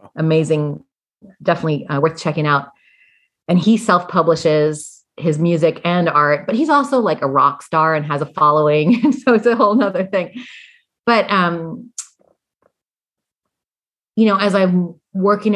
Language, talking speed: English, 145 wpm